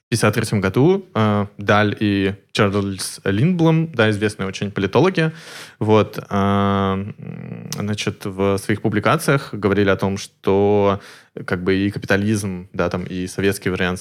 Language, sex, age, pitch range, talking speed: Russian, male, 20-39, 100-135 Hz, 135 wpm